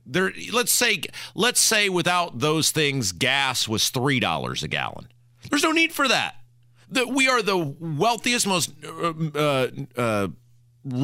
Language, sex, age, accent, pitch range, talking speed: English, male, 40-59, American, 125-185 Hz, 140 wpm